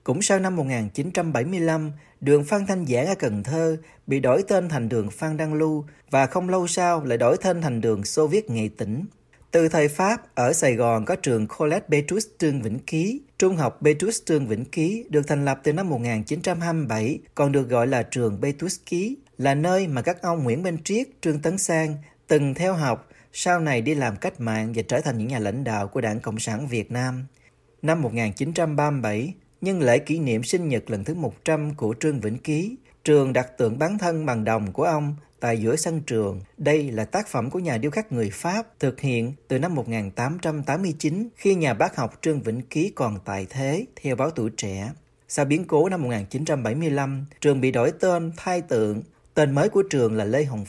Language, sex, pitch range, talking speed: Vietnamese, male, 120-165 Hz, 205 wpm